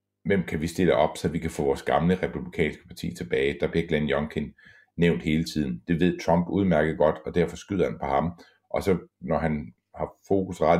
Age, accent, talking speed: 60-79, native, 210 wpm